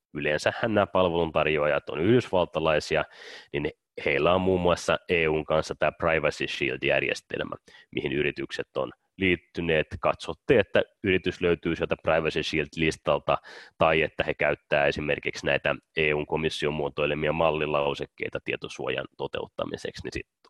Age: 30-49